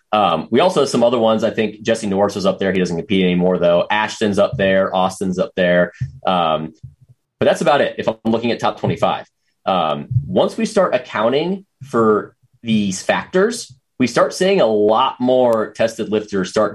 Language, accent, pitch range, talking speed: English, American, 95-130 Hz, 190 wpm